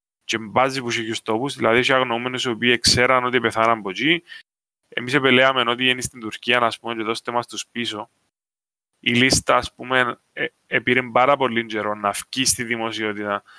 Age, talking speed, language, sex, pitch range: 20-39, 170 wpm, Greek, male, 115-135 Hz